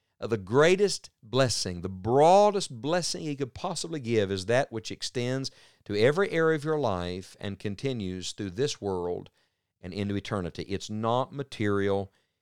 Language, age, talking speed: English, 50-69, 155 wpm